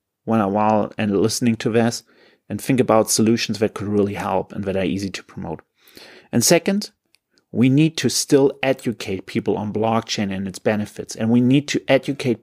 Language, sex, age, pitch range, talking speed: English, male, 40-59, 105-130 Hz, 190 wpm